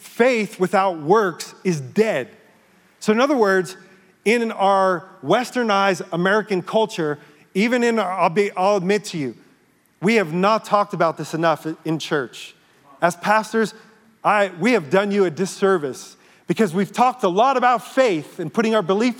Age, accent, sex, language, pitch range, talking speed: 40-59, American, male, English, 175-235 Hz, 165 wpm